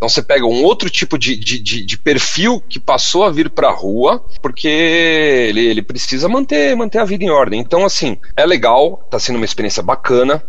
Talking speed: 205 wpm